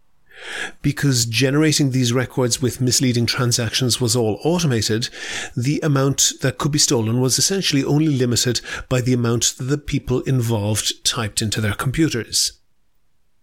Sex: male